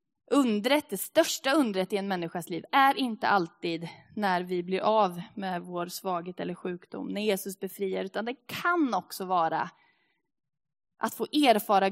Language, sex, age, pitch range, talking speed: Swedish, female, 20-39, 180-235 Hz, 150 wpm